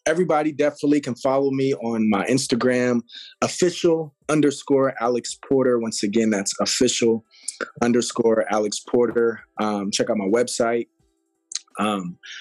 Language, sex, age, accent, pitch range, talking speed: English, male, 20-39, American, 110-140 Hz, 120 wpm